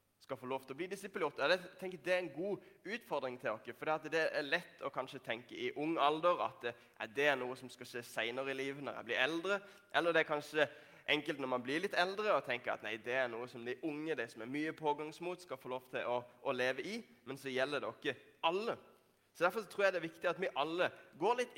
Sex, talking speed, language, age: male, 255 wpm, English, 20-39